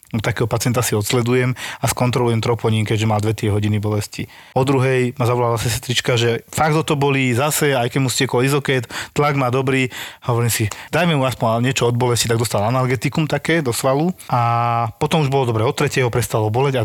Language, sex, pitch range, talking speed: Slovak, male, 115-145 Hz, 190 wpm